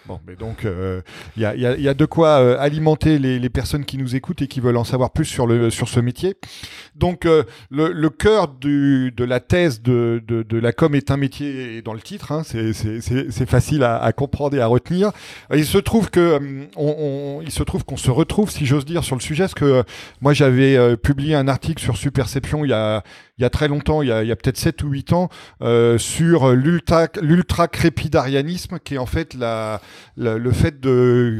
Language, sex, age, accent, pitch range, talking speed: French, male, 40-59, French, 120-155 Hz, 240 wpm